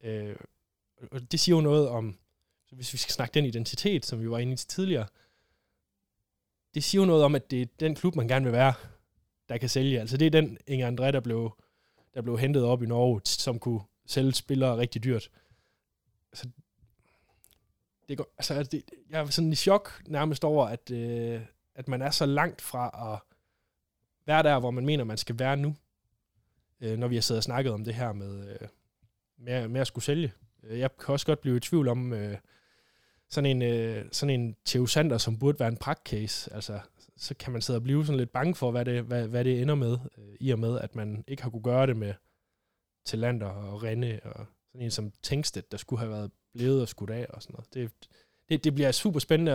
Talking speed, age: 215 wpm, 20-39